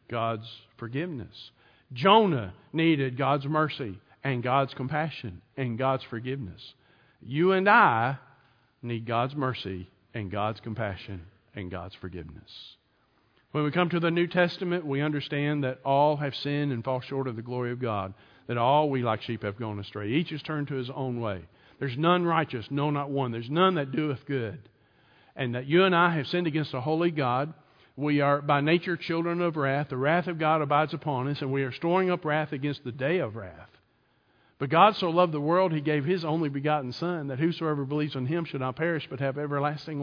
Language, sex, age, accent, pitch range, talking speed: English, male, 50-69, American, 125-160 Hz, 195 wpm